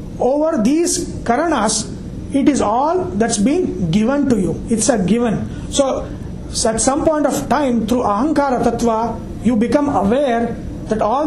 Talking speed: 150 wpm